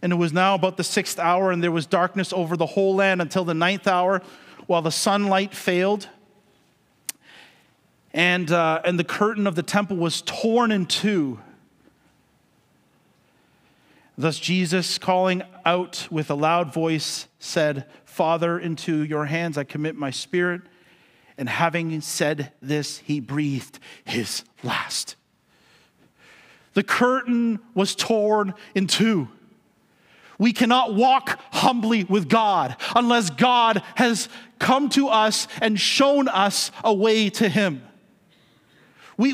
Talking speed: 135 wpm